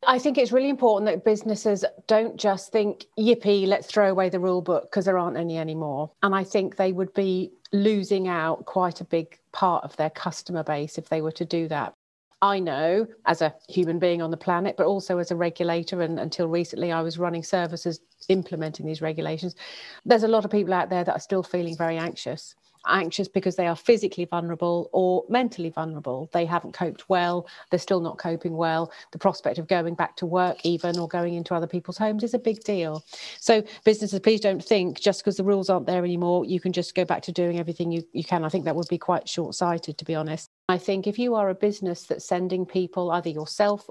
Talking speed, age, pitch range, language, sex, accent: 225 wpm, 40-59, 170-200 Hz, English, female, British